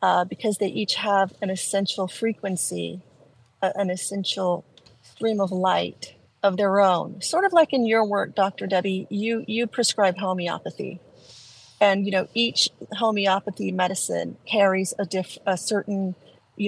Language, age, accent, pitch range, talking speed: English, 40-59, American, 180-210 Hz, 150 wpm